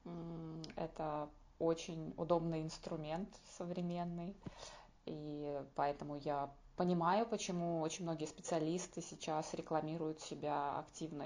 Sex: female